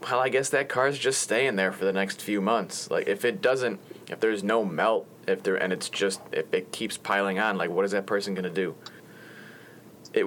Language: English